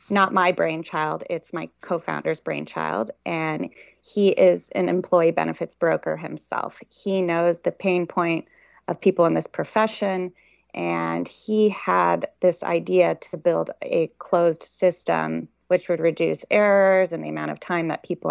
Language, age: English, 20-39